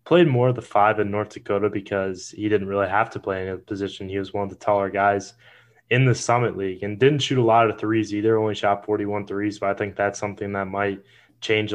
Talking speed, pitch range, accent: 250 wpm, 100-115 Hz, American